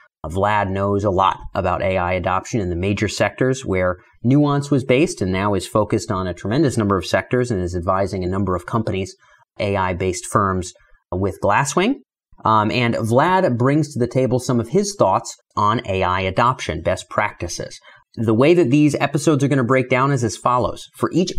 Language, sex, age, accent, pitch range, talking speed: English, male, 30-49, American, 95-125 Hz, 190 wpm